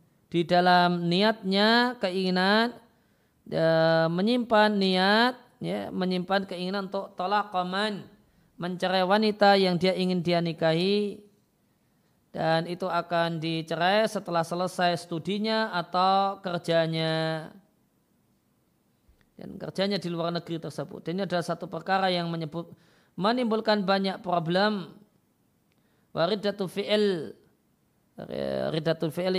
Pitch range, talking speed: 170-200 Hz, 95 wpm